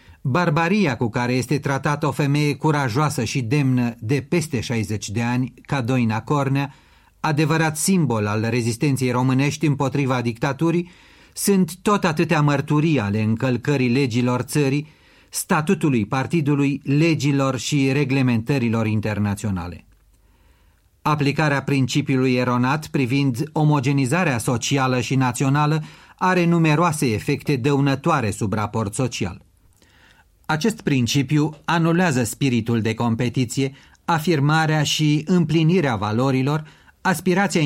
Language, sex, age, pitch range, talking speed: Romanian, male, 40-59, 120-155 Hz, 105 wpm